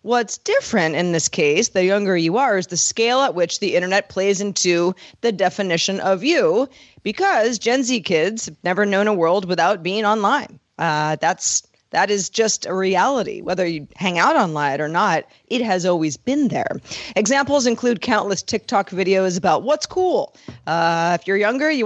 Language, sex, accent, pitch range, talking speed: English, female, American, 180-235 Hz, 185 wpm